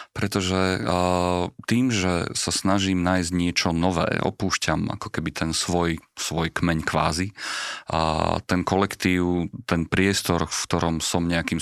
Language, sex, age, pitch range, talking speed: Slovak, male, 40-59, 85-100 Hz, 135 wpm